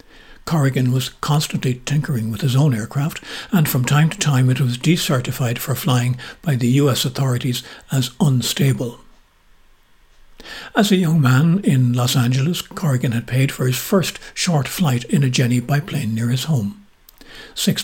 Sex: male